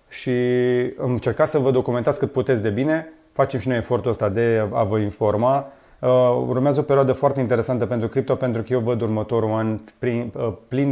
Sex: male